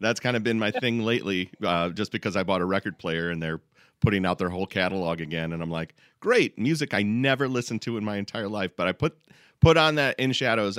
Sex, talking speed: male, 245 wpm